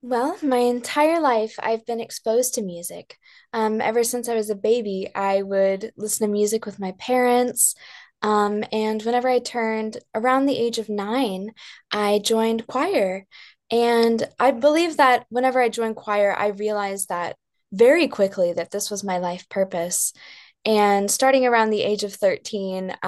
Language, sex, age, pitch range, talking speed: English, female, 10-29, 195-245 Hz, 165 wpm